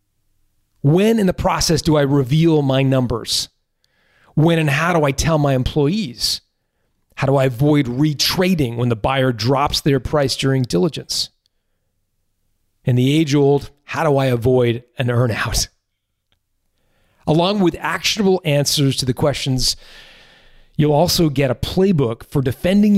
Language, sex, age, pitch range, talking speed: English, male, 40-59, 125-165 Hz, 140 wpm